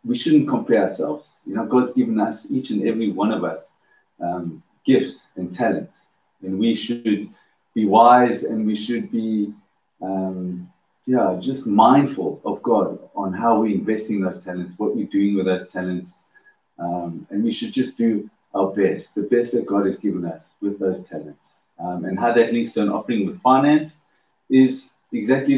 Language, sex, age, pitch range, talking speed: English, male, 30-49, 95-120 Hz, 180 wpm